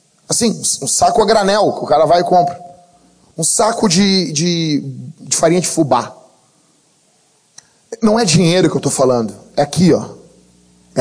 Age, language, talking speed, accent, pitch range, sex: 40-59, Portuguese, 165 wpm, Brazilian, 155-225 Hz, male